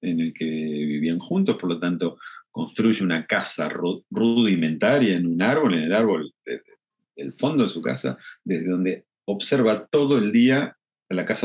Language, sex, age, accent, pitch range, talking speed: Spanish, male, 40-59, Argentinian, 80-115 Hz, 175 wpm